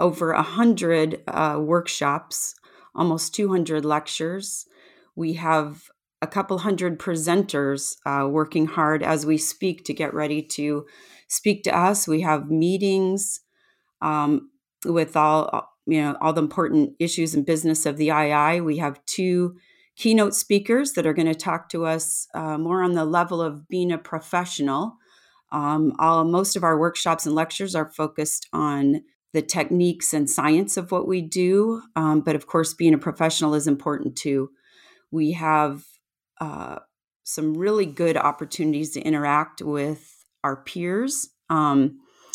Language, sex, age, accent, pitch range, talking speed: English, female, 30-49, American, 155-180 Hz, 155 wpm